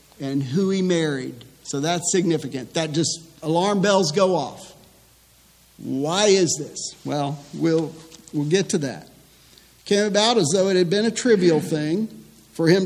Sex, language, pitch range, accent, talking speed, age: male, English, 145-190 Hz, American, 160 wpm, 50-69